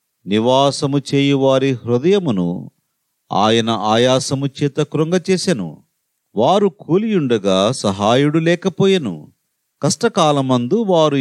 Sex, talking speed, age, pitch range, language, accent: male, 70 wpm, 40-59, 125-170 Hz, Telugu, native